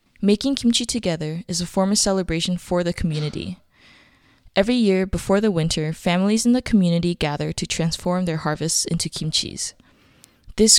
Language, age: Korean, 20-39